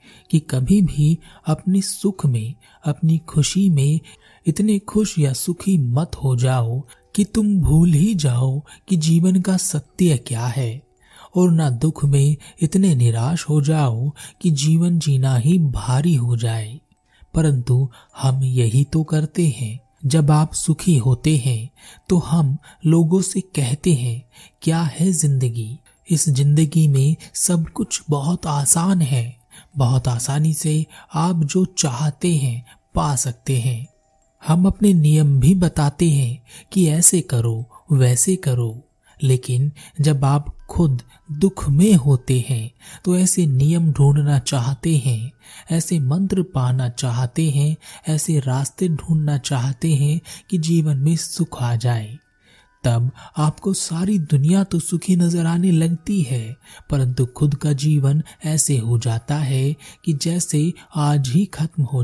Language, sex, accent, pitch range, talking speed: Hindi, male, native, 130-165 Hz, 140 wpm